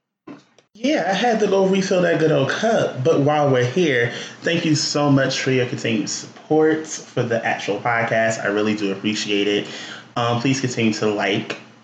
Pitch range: 115-155 Hz